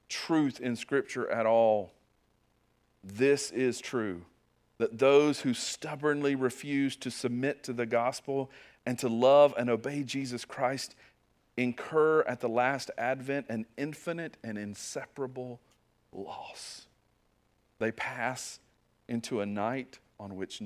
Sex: male